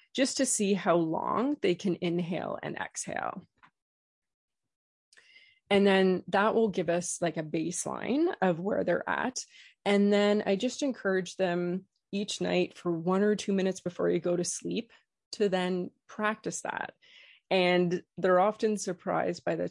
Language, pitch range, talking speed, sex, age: English, 175-210 Hz, 155 wpm, female, 20-39